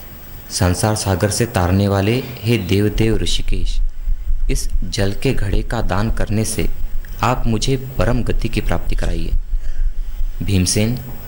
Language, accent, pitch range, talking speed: Hindi, native, 90-115 Hz, 130 wpm